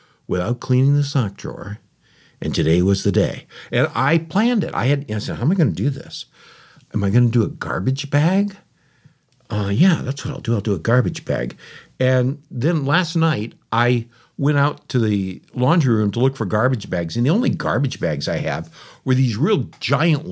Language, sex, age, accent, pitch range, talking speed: English, male, 60-79, American, 110-145 Hz, 210 wpm